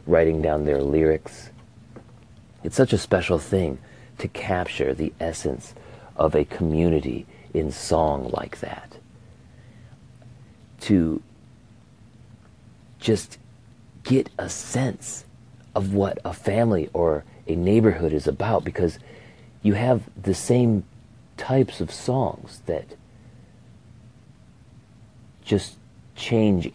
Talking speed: 100 wpm